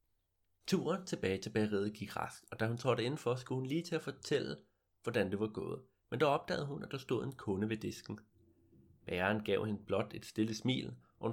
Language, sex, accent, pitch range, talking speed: Danish, male, native, 100-135 Hz, 215 wpm